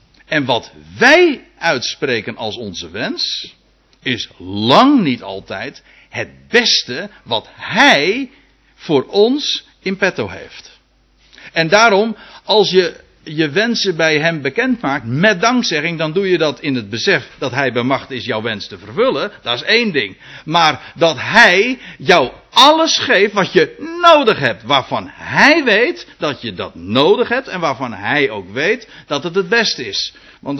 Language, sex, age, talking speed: Dutch, male, 60-79, 160 wpm